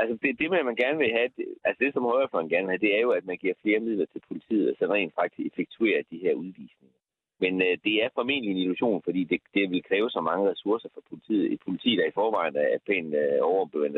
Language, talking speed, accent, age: Danish, 255 wpm, native, 30-49